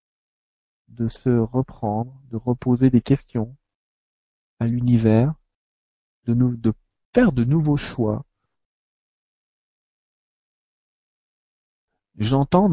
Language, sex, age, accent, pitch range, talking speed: French, male, 40-59, French, 110-125 Hz, 75 wpm